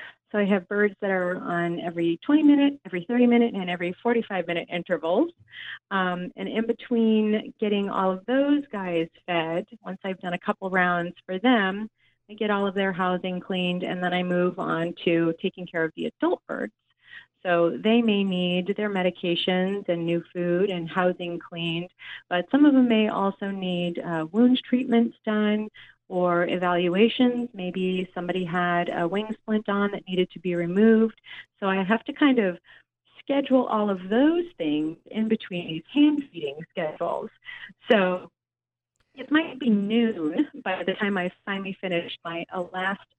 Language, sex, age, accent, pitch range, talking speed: English, female, 30-49, American, 175-225 Hz, 165 wpm